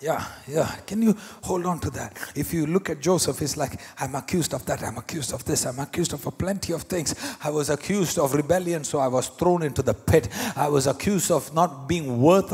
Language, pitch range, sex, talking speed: English, 145-200 Hz, male, 235 wpm